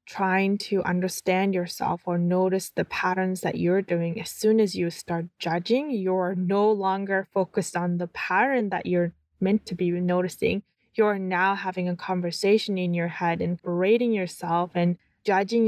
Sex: female